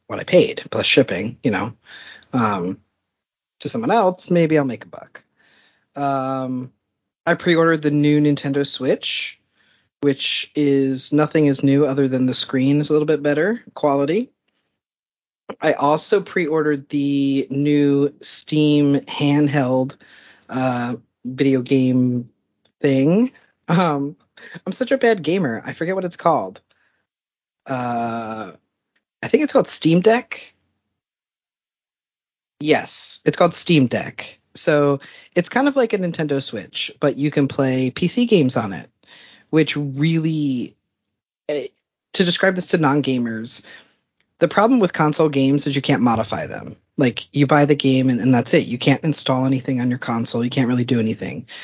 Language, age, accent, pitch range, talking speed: English, 40-59, American, 130-160 Hz, 145 wpm